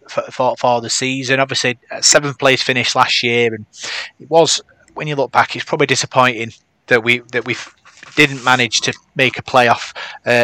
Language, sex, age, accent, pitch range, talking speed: English, male, 30-49, British, 120-135 Hz, 185 wpm